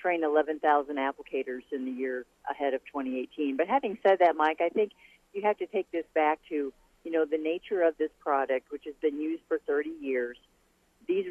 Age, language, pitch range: 40-59, English, 145-200 Hz